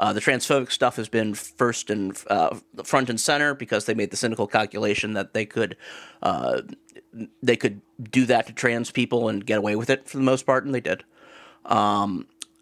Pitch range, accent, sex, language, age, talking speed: 115-150 Hz, American, male, English, 30-49, 200 wpm